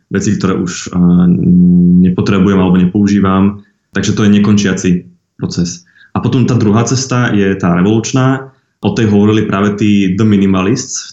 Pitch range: 90-110 Hz